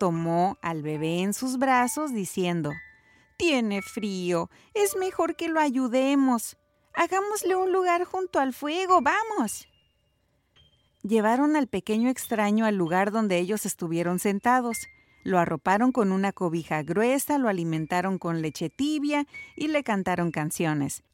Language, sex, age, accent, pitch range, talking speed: Spanish, female, 40-59, Mexican, 180-300 Hz, 130 wpm